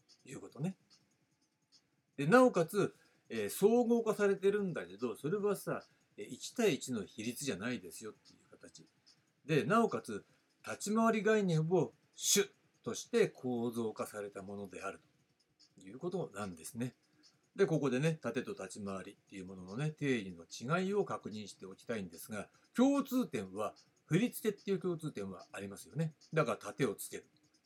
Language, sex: Japanese, male